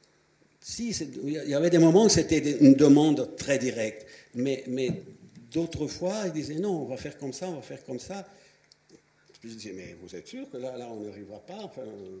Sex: male